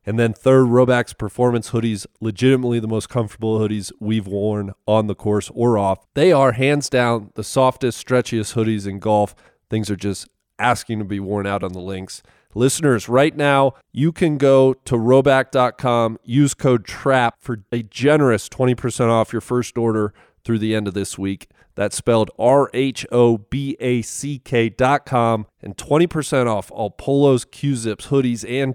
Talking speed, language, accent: 160 wpm, English, American